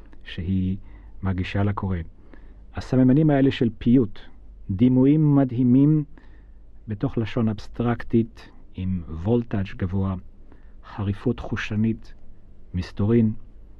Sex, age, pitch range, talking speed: male, 40-59, 100-125 Hz, 80 wpm